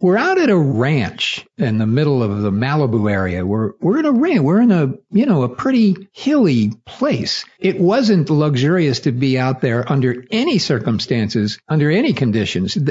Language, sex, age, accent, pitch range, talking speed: English, male, 50-69, American, 120-180 Hz, 175 wpm